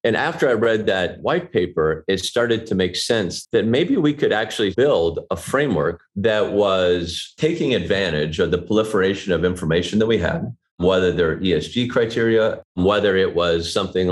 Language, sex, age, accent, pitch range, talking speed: English, male, 40-59, American, 90-125 Hz, 170 wpm